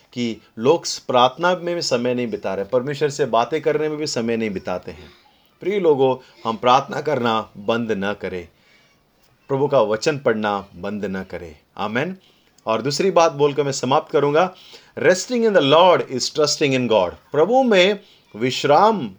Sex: male